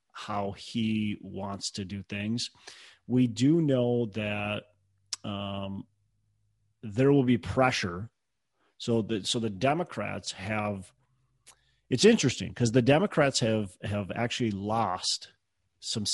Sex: male